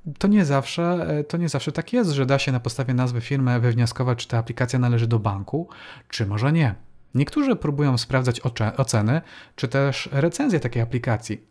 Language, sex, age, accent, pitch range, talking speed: Polish, male, 40-59, native, 120-150 Hz, 165 wpm